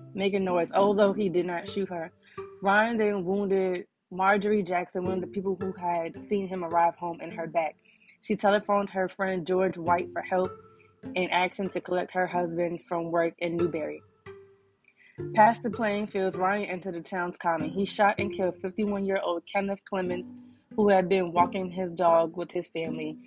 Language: English